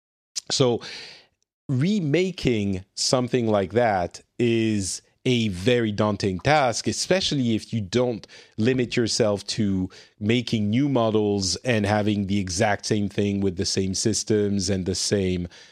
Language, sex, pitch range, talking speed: English, male, 100-125 Hz, 125 wpm